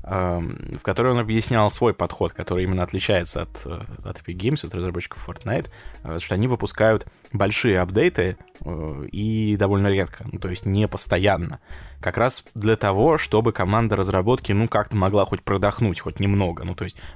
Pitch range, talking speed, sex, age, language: 90-115 Hz, 160 wpm, male, 20-39, Russian